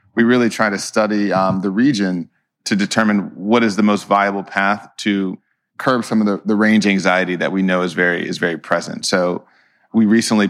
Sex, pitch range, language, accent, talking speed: male, 95-110 Hz, English, American, 200 wpm